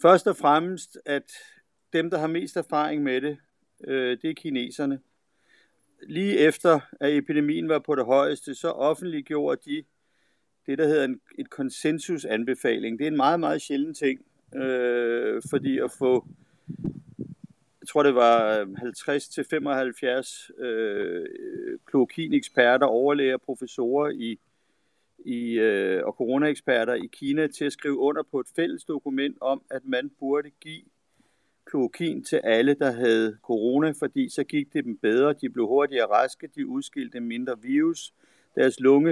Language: Danish